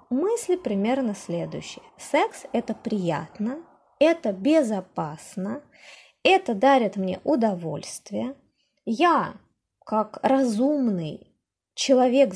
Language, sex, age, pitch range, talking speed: Russian, female, 20-39, 200-280 Hz, 80 wpm